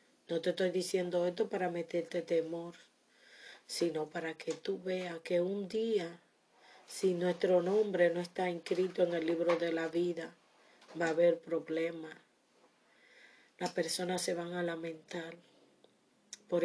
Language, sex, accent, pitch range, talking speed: English, female, American, 170-195 Hz, 140 wpm